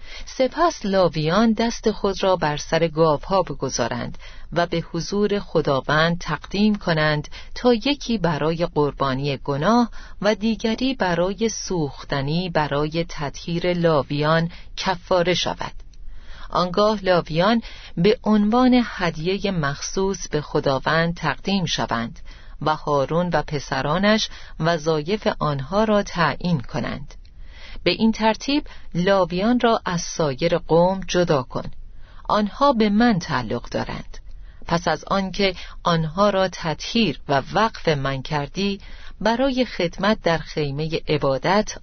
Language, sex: Persian, female